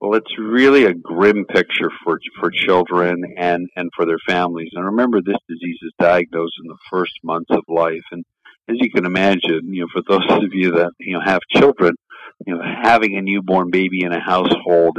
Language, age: English, 50-69